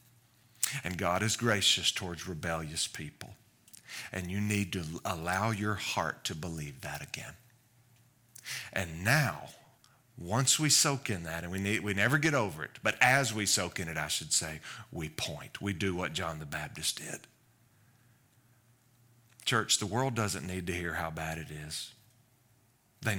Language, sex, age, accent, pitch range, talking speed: English, male, 40-59, American, 90-120 Hz, 160 wpm